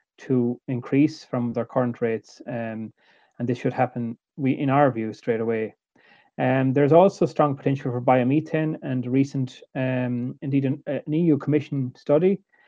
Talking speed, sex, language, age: 165 wpm, male, English, 30-49